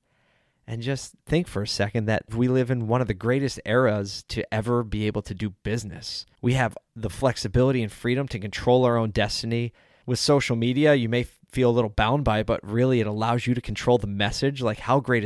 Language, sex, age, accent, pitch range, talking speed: English, male, 20-39, American, 110-140 Hz, 220 wpm